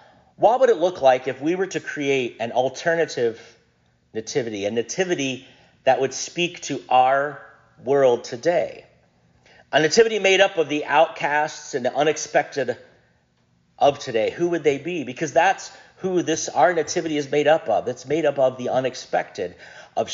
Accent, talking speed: American, 165 wpm